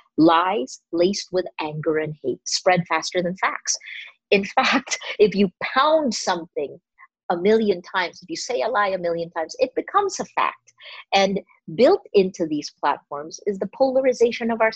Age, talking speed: 50-69, 165 wpm